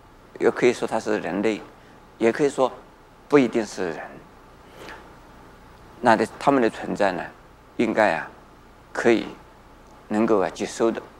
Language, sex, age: Chinese, male, 50-69